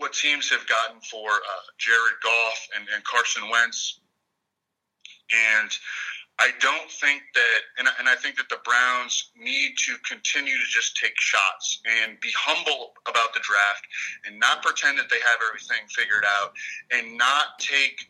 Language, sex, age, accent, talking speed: English, male, 40-59, American, 160 wpm